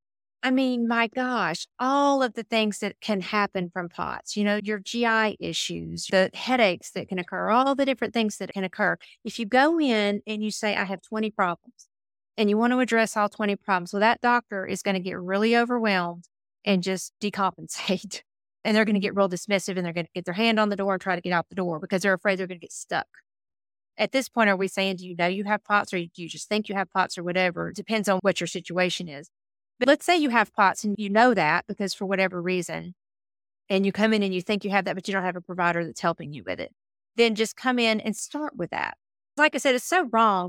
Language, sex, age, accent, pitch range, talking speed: English, female, 40-59, American, 185-235 Hz, 255 wpm